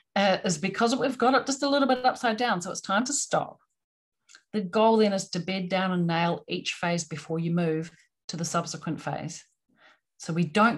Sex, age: female, 40-59